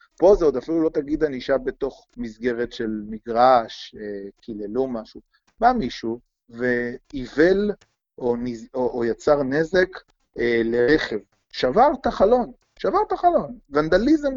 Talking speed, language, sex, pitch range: 120 wpm, Hebrew, male, 115-145 Hz